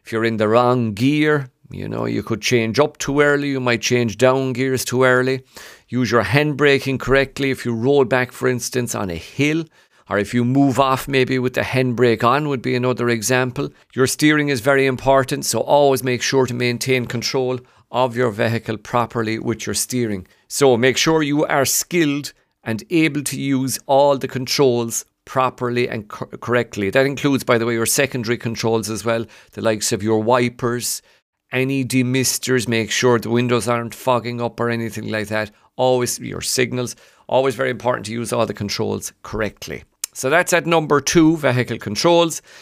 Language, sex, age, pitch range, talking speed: English, male, 50-69, 120-145 Hz, 185 wpm